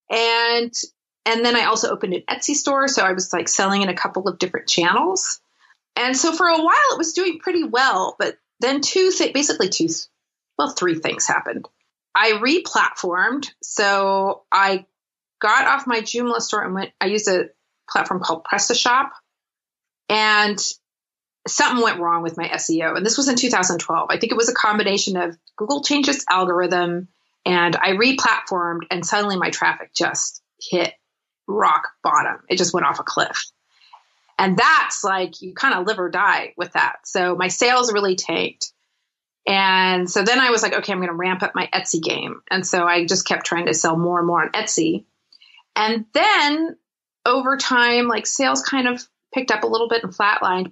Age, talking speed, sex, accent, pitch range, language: 30-49, 180 wpm, female, American, 185-260 Hz, English